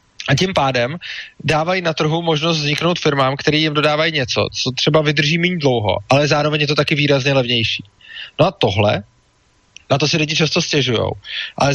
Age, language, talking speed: 20-39, Czech, 180 wpm